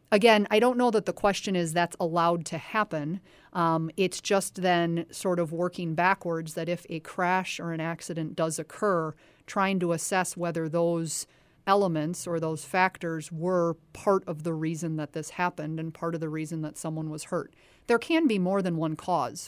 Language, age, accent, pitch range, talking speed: English, 40-59, American, 160-185 Hz, 190 wpm